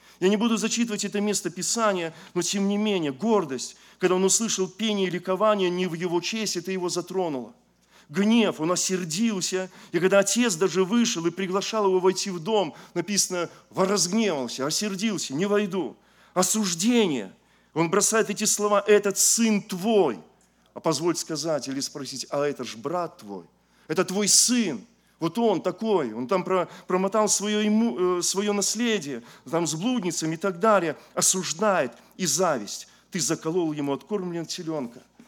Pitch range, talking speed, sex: 150-205 Hz, 150 wpm, male